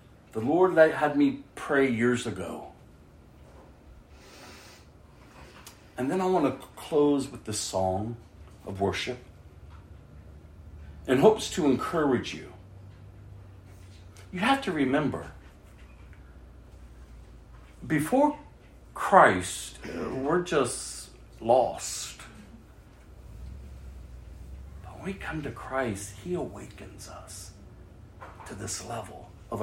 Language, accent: English, American